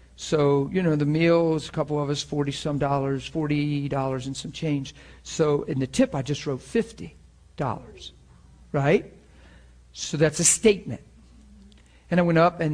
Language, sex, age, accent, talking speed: English, male, 50-69, American, 160 wpm